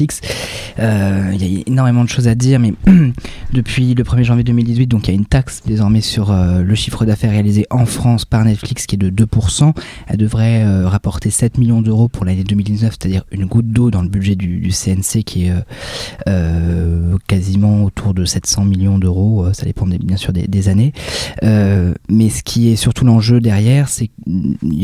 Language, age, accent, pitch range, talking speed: French, 20-39, French, 95-115 Hz, 205 wpm